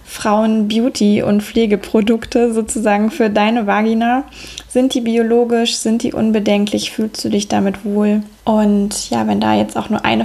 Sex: female